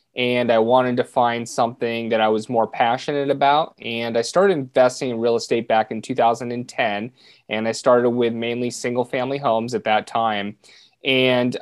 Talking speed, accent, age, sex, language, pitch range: 190 wpm, American, 30-49, male, English, 115-130 Hz